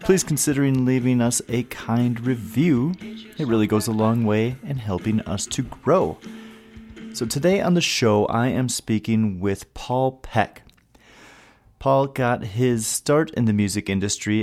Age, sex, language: 30-49, male, English